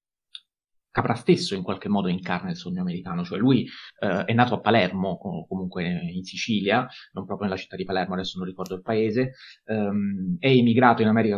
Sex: male